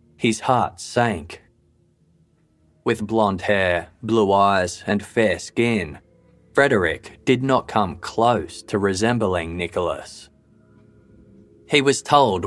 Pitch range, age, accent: 100-120 Hz, 20-39, Australian